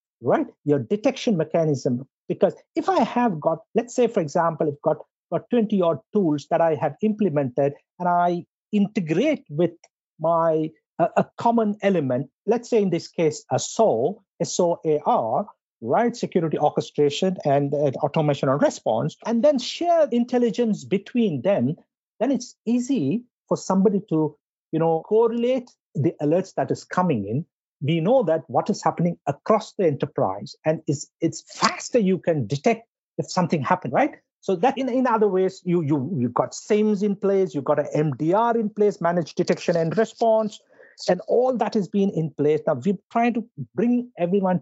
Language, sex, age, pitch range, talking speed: English, male, 50-69, 155-220 Hz, 170 wpm